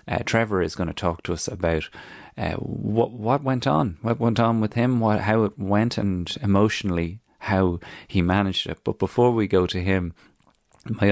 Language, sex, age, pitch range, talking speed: English, male, 30-49, 85-110 Hz, 195 wpm